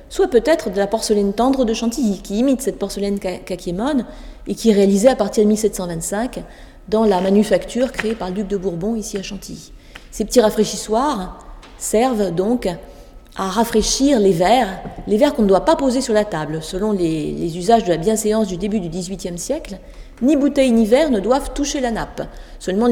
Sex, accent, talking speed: female, French, 195 wpm